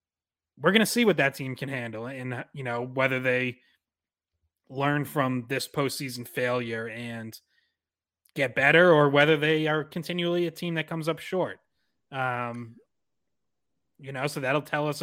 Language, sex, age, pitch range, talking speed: English, male, 20-39, 125-150 Hz, 160 wpm